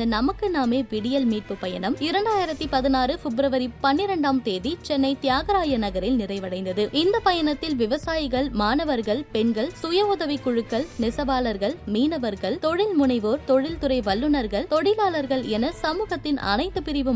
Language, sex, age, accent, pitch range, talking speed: Tamil, female, 20-39, native, 225-310 Hz, 110 wpm